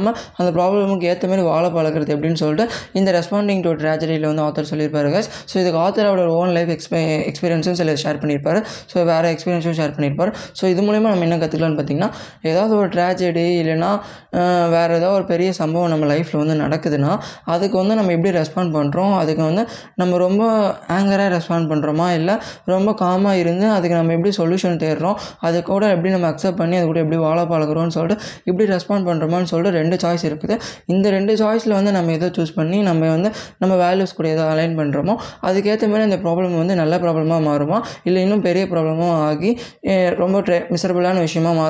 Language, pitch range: Tamil, 160-190 Hz